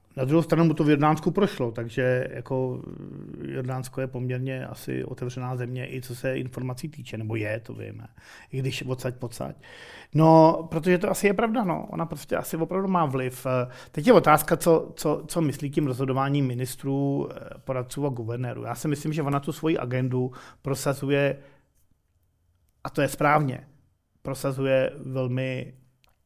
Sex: male